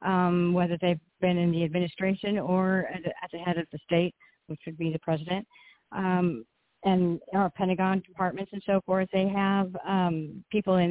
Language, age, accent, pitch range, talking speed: English, 50-69, American, 165-195 Hz, 185 wpm